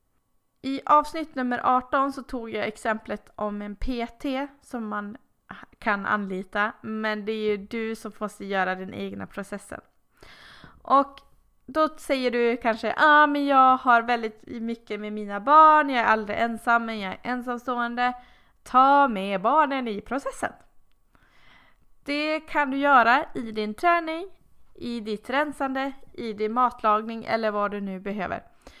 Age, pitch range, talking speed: 20-39, 215-275 Hz, 150 wpm